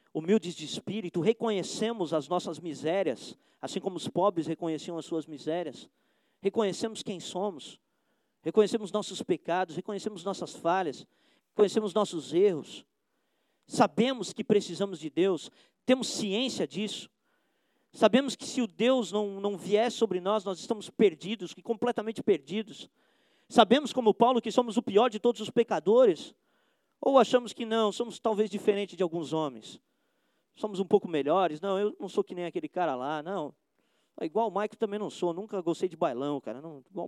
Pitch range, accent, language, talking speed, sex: 165-220 Hz, Brazilian, Portuguese, 155 wpm, male